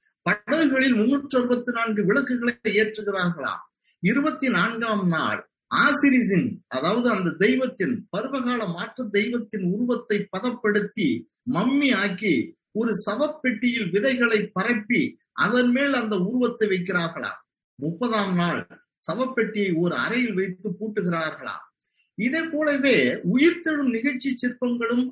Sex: male